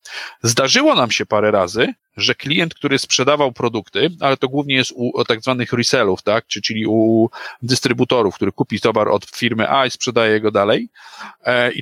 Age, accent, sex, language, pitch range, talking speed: 40-59, native, male, Polish, 125-150 Hz, 170 wpm